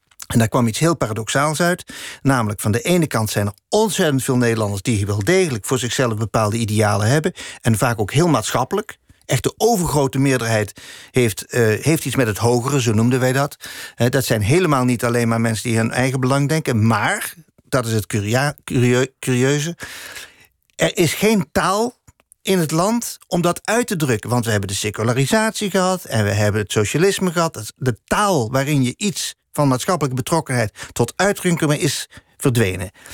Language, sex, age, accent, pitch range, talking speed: Dutch, male, 40-59, Dutch, 115-160 Hz, 175 wpm